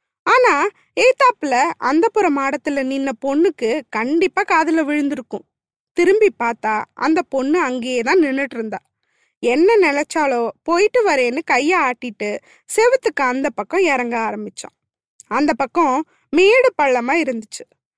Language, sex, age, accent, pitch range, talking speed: Tamil, female, 20-39, native, 265-380 Hz, 105 wpm